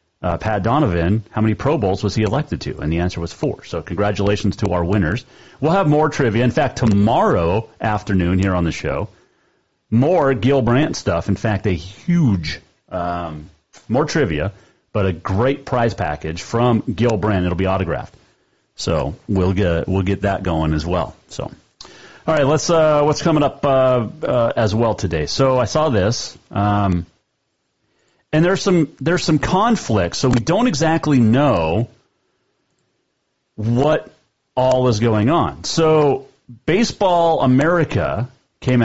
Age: 40-59